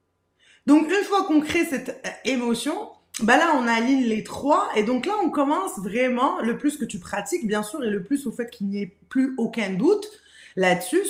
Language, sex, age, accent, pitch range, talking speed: French, female, 20-39, French, 210-285 Hz, 205 wpm